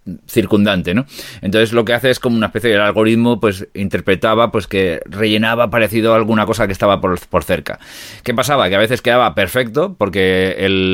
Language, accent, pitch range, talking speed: Spanish, Spanish, 95-115 Hz, 190 wpm